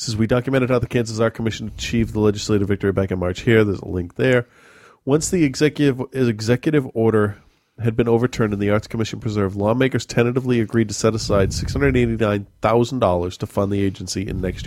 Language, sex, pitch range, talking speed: English, male, 95-120 Hz, 190 wpm